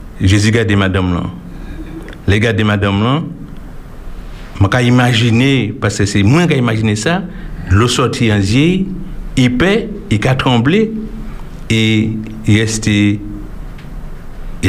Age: 60-79